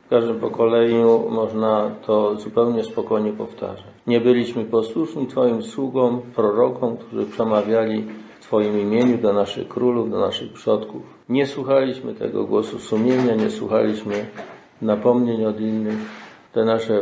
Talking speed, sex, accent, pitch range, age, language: 130 wpm, male, native, 105-125 Hz, 50-69, Polish